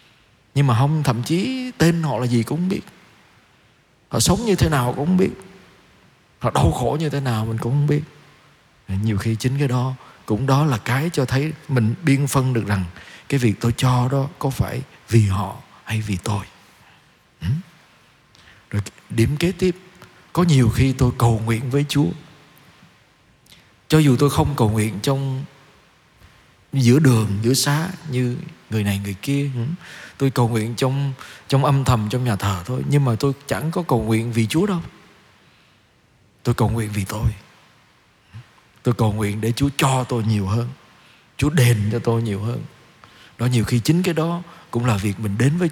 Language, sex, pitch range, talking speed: Vietnamese, male, 115-145 Hz, 185 wpm